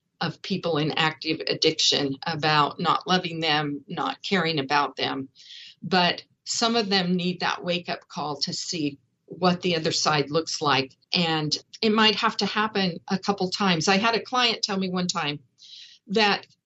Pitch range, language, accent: 175-235 Hz, English, American